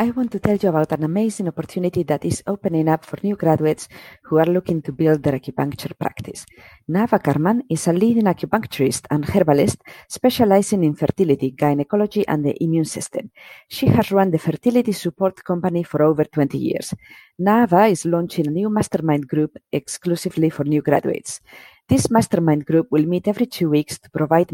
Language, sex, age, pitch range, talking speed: English, female, 40-59, 150-195 Hz, 175 wpm